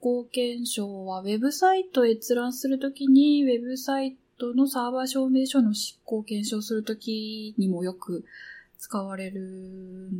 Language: Japanese